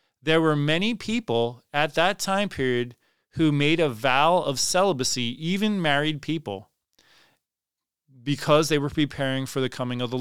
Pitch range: 140-185 Hz